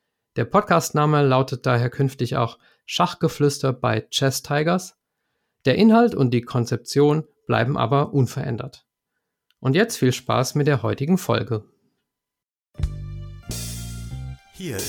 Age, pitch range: 50-69, 115-150 Hz